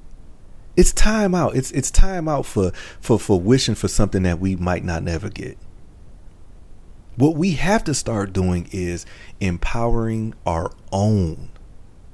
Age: 40-59